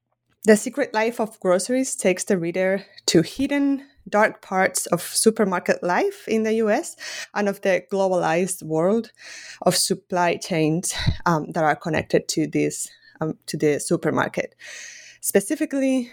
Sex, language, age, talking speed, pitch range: female, English, 20-39, 140 wpm, 175-235 Hz